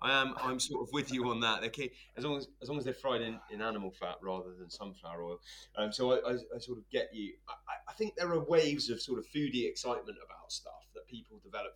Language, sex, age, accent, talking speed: English, male, 20-39, British, 260 wpm